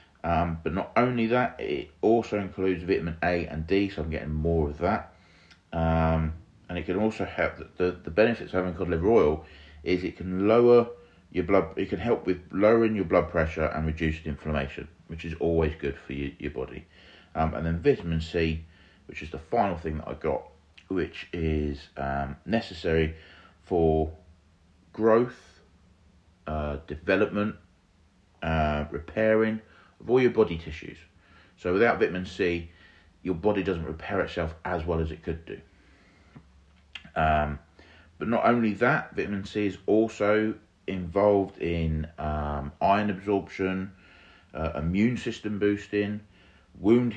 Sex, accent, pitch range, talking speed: male, British, 80-100 Hz, 150 wpm